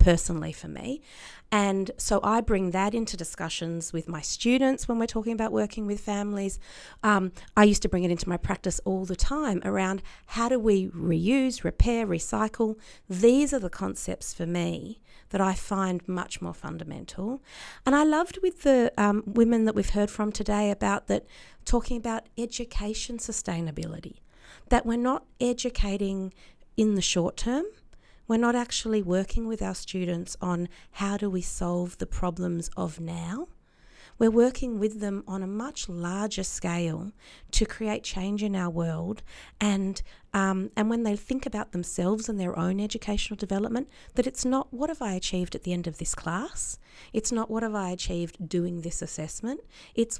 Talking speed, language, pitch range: 170 wpm, English, 180-230 Hz